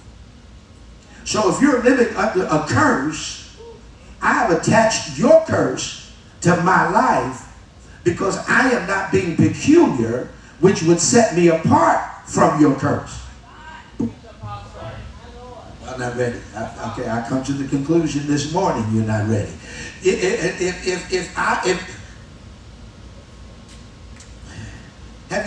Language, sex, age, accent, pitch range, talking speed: English, male, 50-69, American, 115-185 Hz, 105 wpm